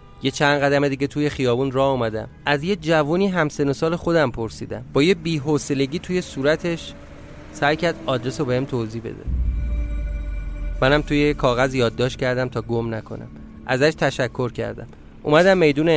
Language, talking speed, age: Persian, 155 wpm, 30-49